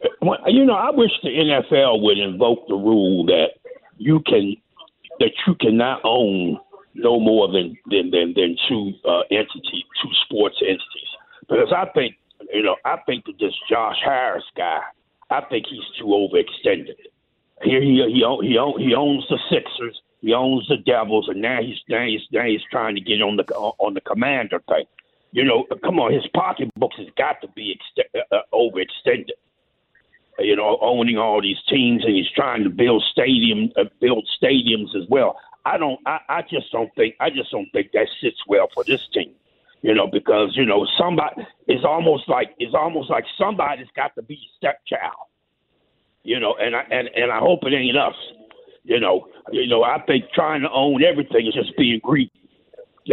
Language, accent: English, American